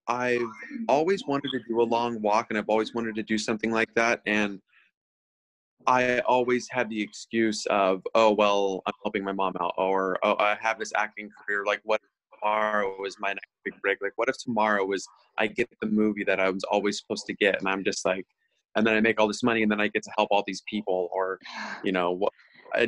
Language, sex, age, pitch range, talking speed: English, male, 20-39, 105-115 Hz, 230 wpm